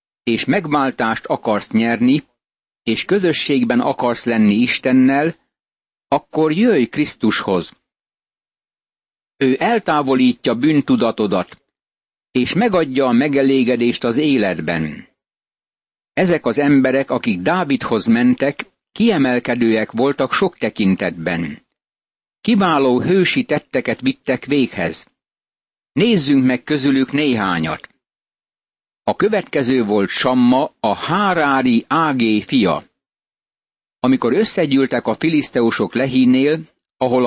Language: Hungarian